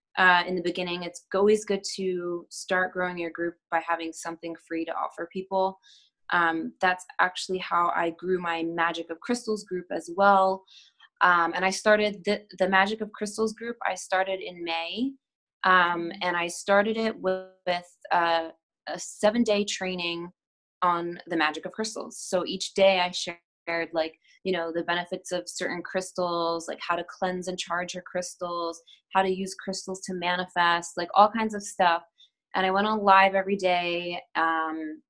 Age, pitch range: 20-39, 170-195 Hz